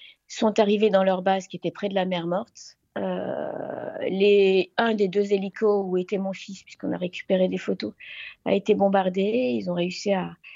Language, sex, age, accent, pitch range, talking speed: French, female, 40-59, French, 190-225 Hz, 195 wpm